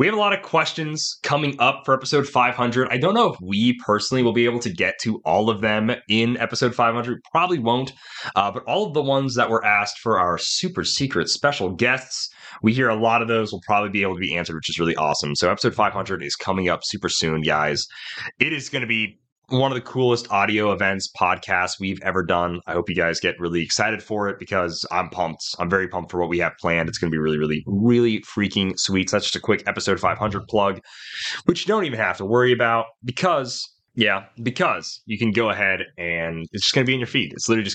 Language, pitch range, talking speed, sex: English, 95-125 Hz, 240 wpm, male